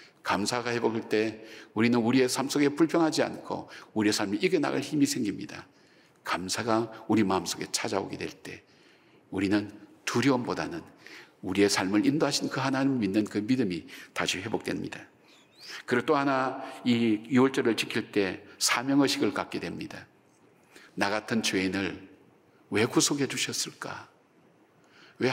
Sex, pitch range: male, 110-135 Hz